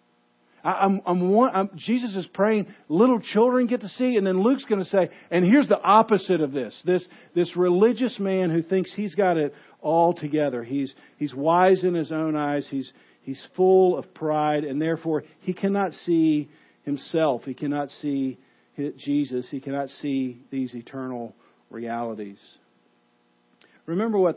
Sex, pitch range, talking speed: male, 115-175 Hz, 155 wpm